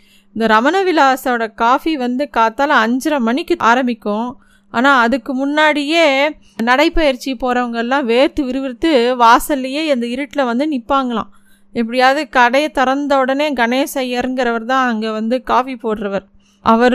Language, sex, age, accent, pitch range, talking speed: Tamil, female, 20-39, native, 225-280 Hz, 110 wpm